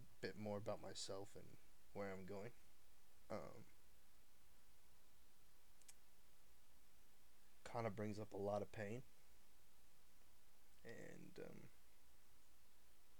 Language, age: English, 20-39